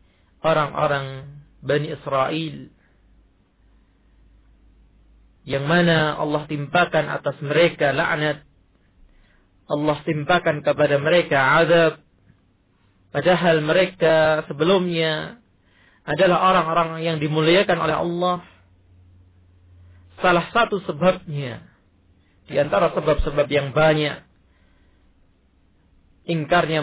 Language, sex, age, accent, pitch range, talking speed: Indonesian, male, 40-59, native, 95-160 Hz, 75 wpm